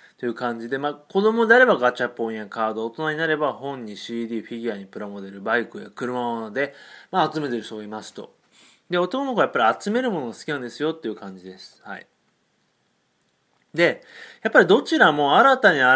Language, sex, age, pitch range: Japanese, male, 30-49, 115-175 Hz